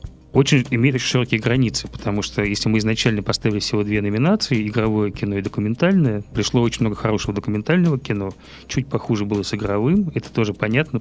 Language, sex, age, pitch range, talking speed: Russian, male, 30-49, 105-125 Hz, 175 wpm